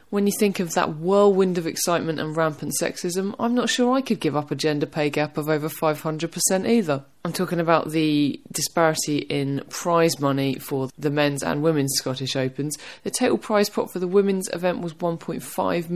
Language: English